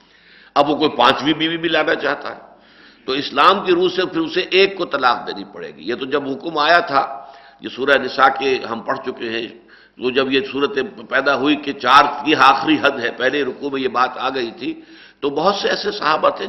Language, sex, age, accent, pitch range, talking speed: English, male, 60-79, Indian, 140-195 Hz, 210 wpm